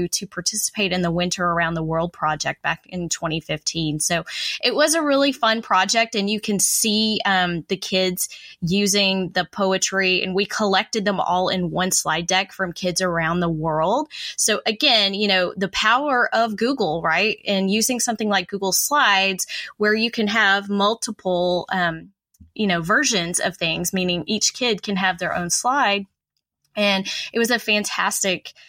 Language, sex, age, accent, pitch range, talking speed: English, female, 20-39, American, 180-215 Hz, 170 wpm